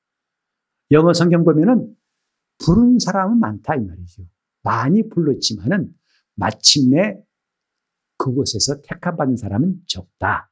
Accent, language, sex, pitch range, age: native, Korean, male, 110-170 Hz, 50-69